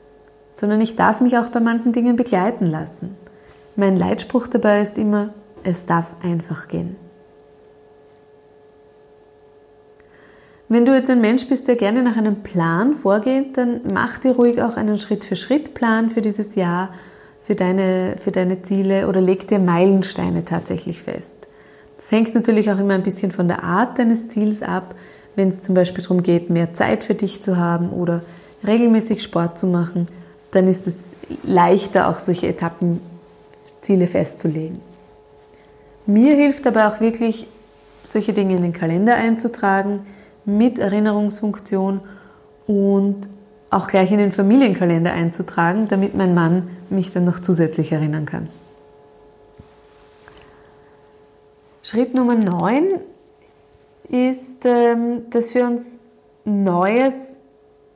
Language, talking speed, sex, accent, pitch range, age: German, 130 wpm, female, German, 170-220 Hz, 20-39